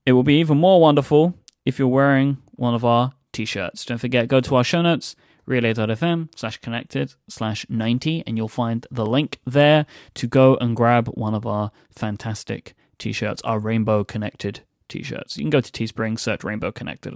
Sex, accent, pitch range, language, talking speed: male, British, 110-135 Hz, English, 180 wpm